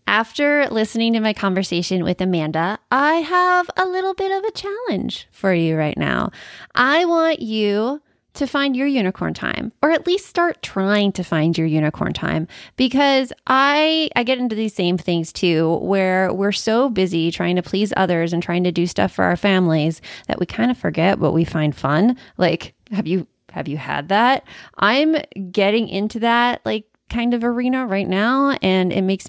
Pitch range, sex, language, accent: 175-245 Hz, female, English, American